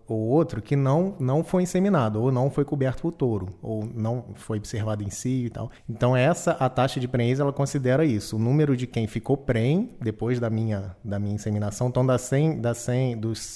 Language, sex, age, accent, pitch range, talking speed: Portuguese, male, 20-39, Brazilian, 110-140 Hz, 215 wpm